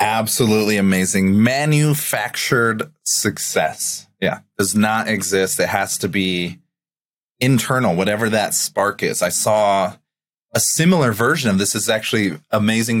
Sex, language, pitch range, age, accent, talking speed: male, English, 95-115 Hz, 30-49, American, 125 wpm